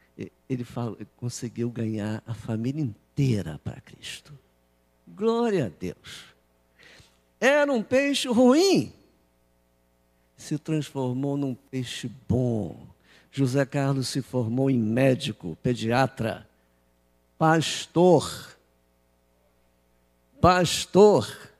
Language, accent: Portuguese, Brazilian